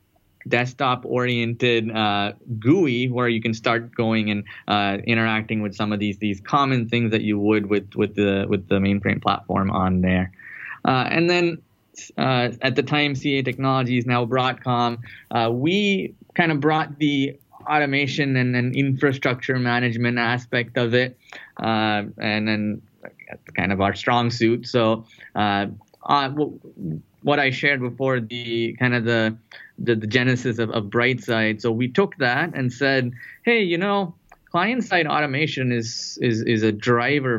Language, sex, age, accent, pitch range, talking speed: English, male, 10-29, American, 110-130 Hz, 155 wpm